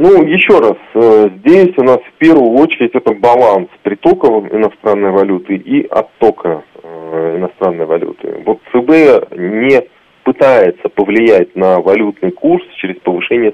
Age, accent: 30-49, native